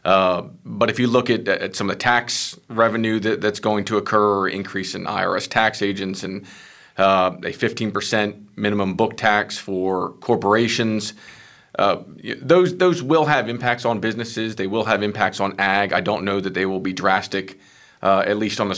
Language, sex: English, male